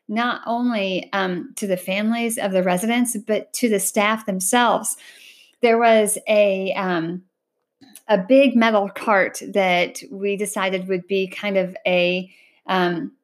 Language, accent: English, American